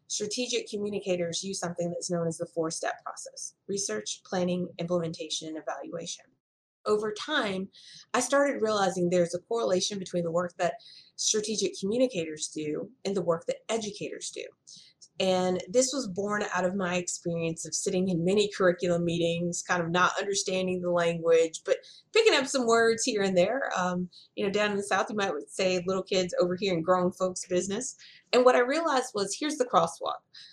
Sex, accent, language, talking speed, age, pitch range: female, American, English, 180 wpm, 30-49, 170-205 Hz